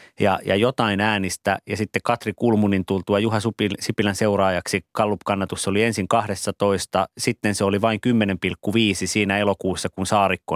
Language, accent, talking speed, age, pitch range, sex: Finnish, native, 140 wpm, 30-49, 95-115 Hz, male